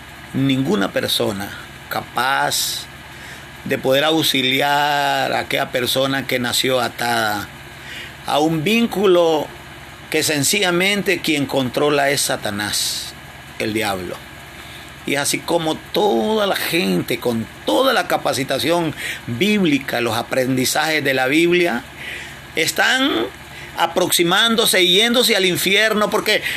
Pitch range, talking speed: 115-170 Hz, 105 wpm